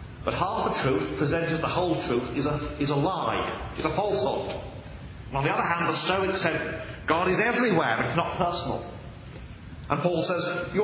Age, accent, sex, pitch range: 40-59, British, male, 130-175 Hz